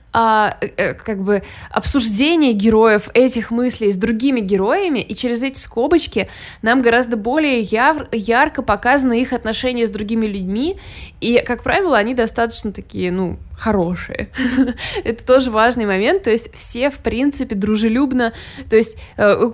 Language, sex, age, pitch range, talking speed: Russian, female, 20-39, 200-255 Hz, 140 wpm